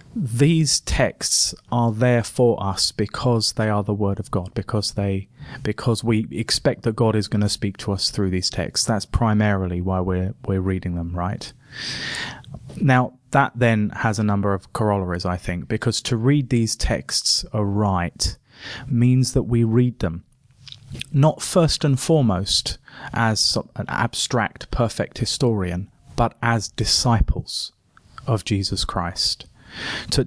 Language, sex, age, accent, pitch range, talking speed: English, male, 30-49, British, 100-120 Hz, 145 wpm